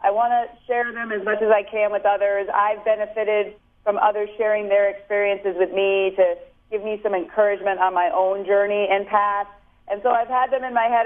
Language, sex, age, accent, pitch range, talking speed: English, female, 40-59, American, 185-215 Hz, 210 wpm